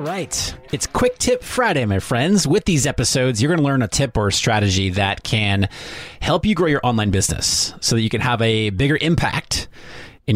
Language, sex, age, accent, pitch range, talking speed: English, male, 30-49, American, 105-130 Hz, 215 wpm